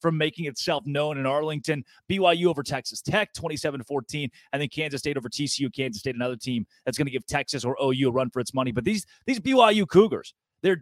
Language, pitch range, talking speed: English, 130-175 Hz, 215 wpm